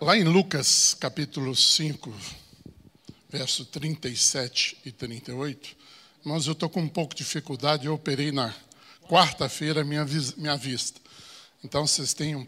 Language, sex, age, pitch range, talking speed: Portuguese, male, 60-79, 145-195 Hz, 130 wpm